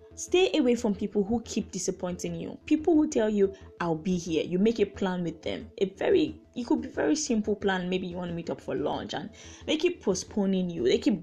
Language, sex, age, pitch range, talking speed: English, female, 10-29, 175-240 Hz, 240 wpm